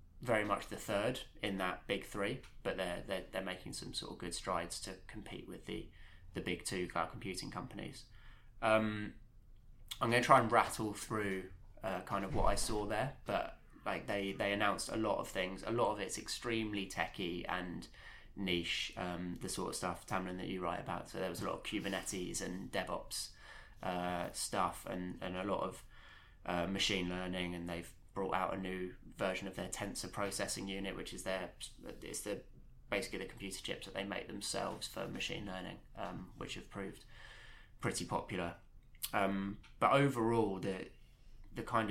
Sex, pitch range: male, 90-105 Hz